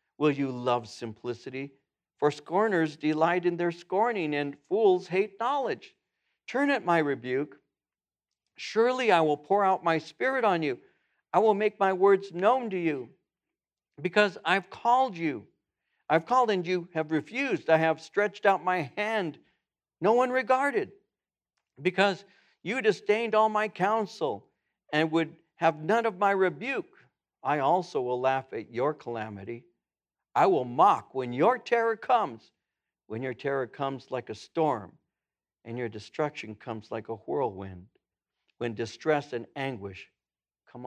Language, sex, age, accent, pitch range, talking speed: English, male, 60-79, American, 125-205 Hz, 145 wpm